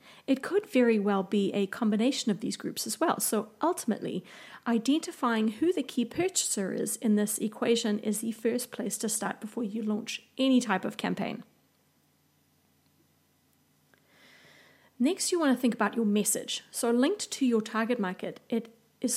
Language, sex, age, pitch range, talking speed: English, female, 30-49, 210-250 Hz, 165 wpm